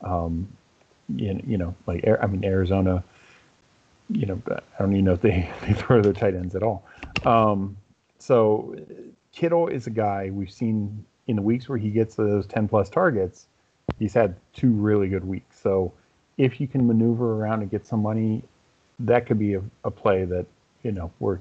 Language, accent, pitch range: English, American, 95-110 Hz